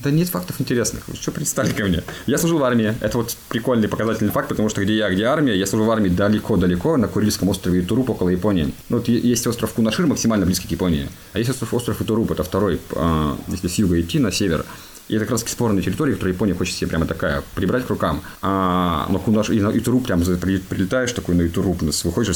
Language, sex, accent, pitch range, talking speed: Russian, male, native, 85-105 Hz, 230 wpm